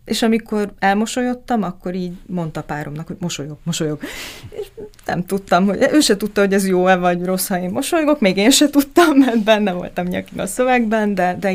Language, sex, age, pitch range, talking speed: Hungarian, female, 30-49, 160-225 Hz, 190 wpm